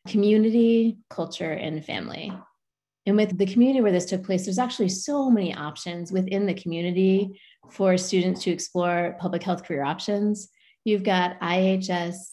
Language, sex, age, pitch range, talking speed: English, female, 20-39, 170-200 Hz, 150 wpm